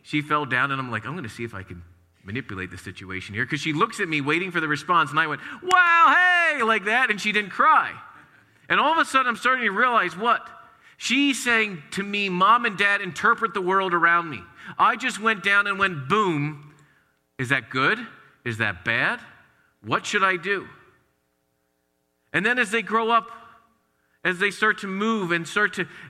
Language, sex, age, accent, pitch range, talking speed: English, male, 40-59, American, 145-225 Hz, 205 wpm